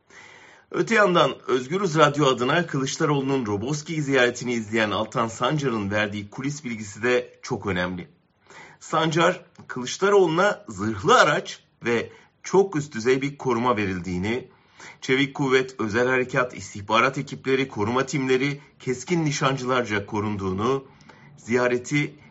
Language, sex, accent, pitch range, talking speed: German, male, Turkish, 105-140 Hz, 110 wpm